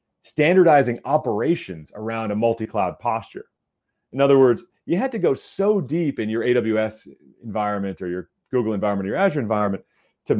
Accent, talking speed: American, 160 wpm